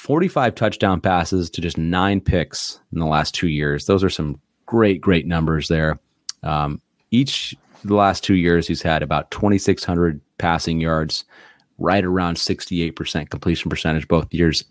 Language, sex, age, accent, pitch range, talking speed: English, male, 30-49, American, 80-100 Hz, 155 wpm